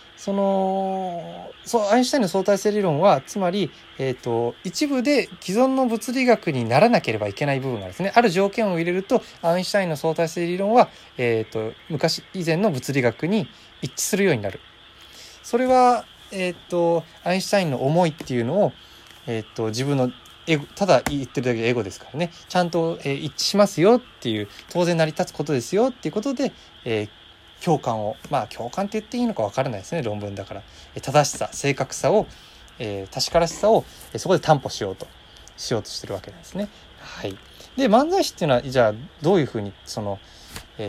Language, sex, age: Japanese, male, 20-39